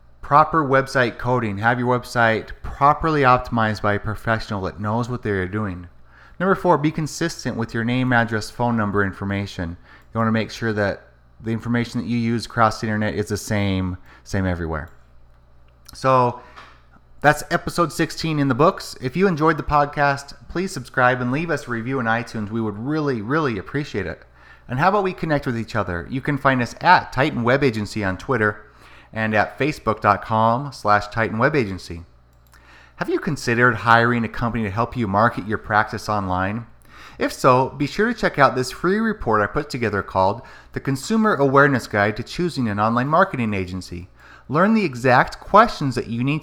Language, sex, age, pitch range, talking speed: English, male, 30-49, 105-140 Hz, 180 wpm